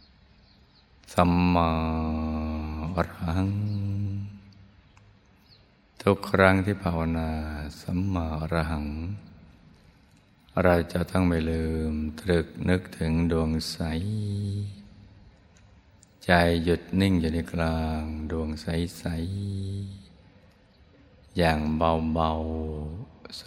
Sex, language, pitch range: male, Thai, 80-90 Hz